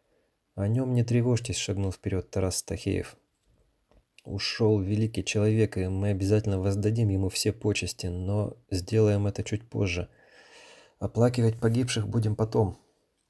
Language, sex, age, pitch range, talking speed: Russian, male, 30-49, 95-110 Hz, 120 wpm